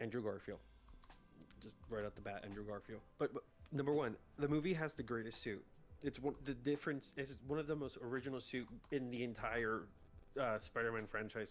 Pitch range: 105-135 Hz